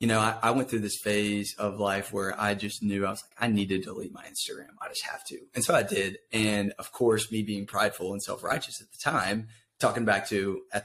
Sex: male